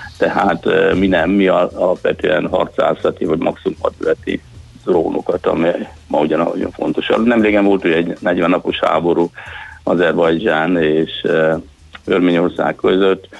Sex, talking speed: male, 125 wpm